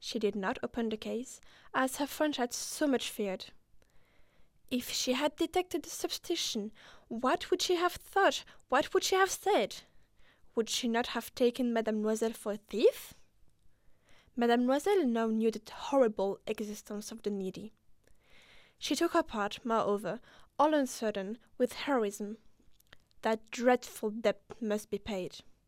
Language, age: English, 10-29